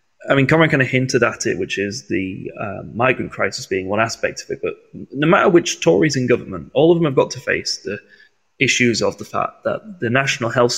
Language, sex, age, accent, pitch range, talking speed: English, male, 20-39, British, 115-170 Hz, 235 wpm